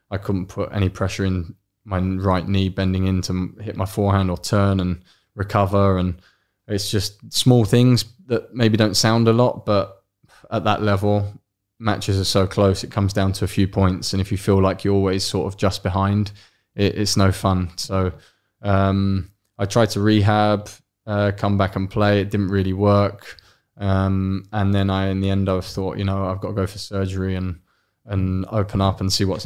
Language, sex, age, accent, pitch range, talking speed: English, male, 20-39, British, 95-105 Hz, 200 wpm